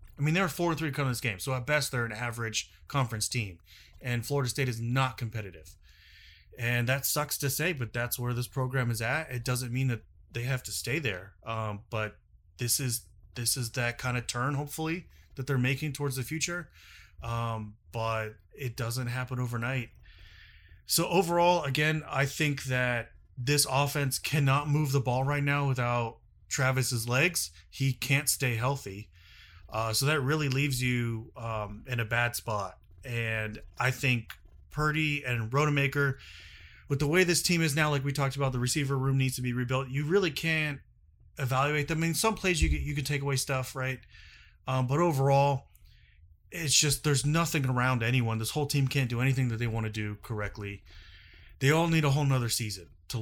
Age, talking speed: 30-49, 190 wpm